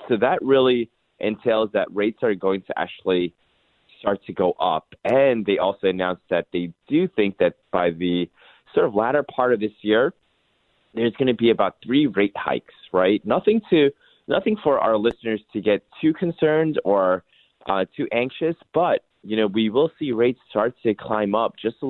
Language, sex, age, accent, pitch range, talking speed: English, male, 30-49, American, 95-120 Hz, 185 wpm